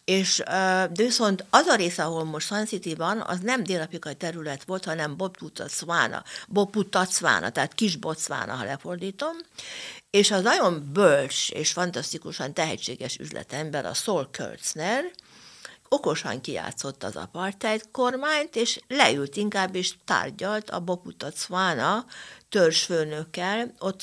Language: Hungarian